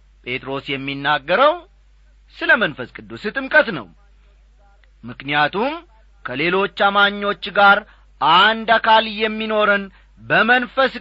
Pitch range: 155-225 Hz